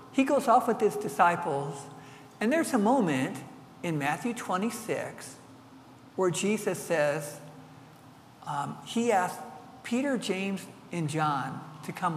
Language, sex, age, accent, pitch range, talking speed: English, male, 60-79, American, 140-195 Hz, 125 wpm